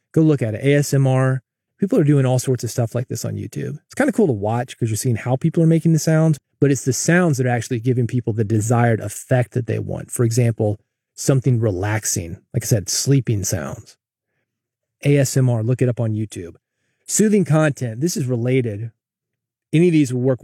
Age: 30-49